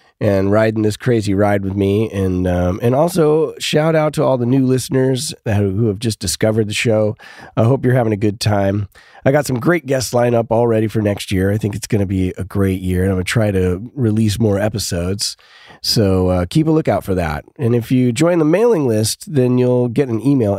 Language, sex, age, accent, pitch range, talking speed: English, male, 30-49, American, 95-125 Hz, 225 wpm